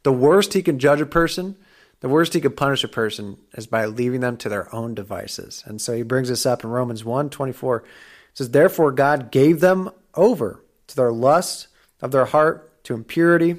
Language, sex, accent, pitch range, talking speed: English, male, American, 120-145 Hz, 210 wpm